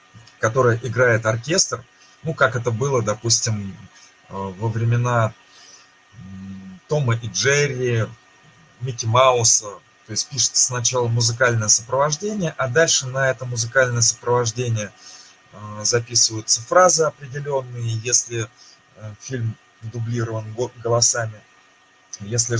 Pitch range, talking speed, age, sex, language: 105-130 Hz, 95 wpm, 20-39, male, Russian